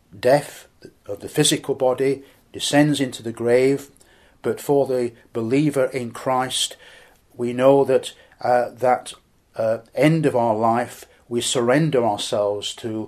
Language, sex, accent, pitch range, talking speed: English, male, British, 115-135 Hz, 135 wpm